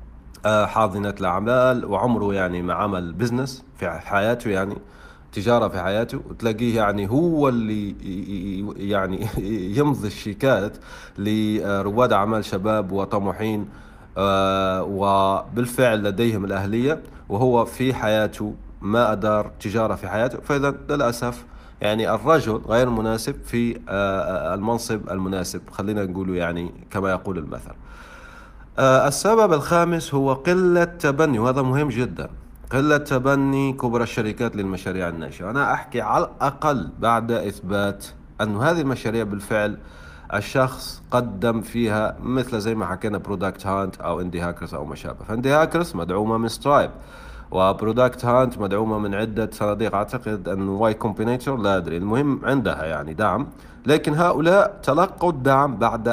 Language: Arabic